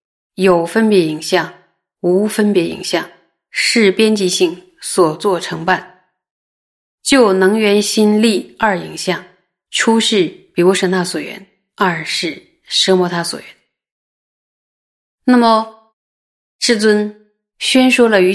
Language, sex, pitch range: Chinese, female, 175-215 Hz